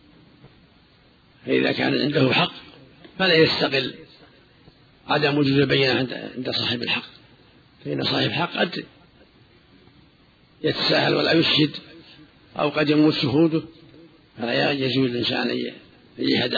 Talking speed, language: 100 wpm, Arabic